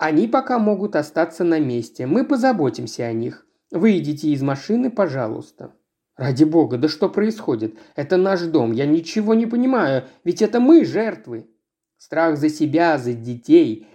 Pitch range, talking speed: 145-210 Hz, 150 wpm